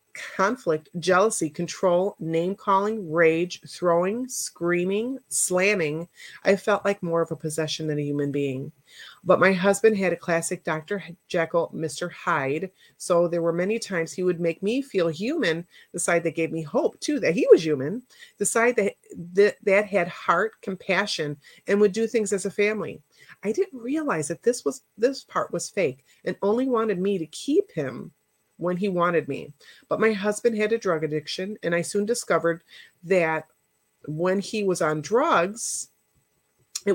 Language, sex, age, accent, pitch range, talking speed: English, female, 30-49, American, 165-210 Hz, 170 wpm